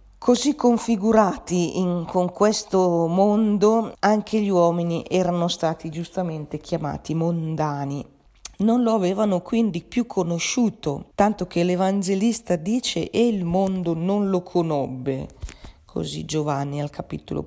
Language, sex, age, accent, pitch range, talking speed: Italian, female, 40-59, native, 155-200 Hz, 115 wpm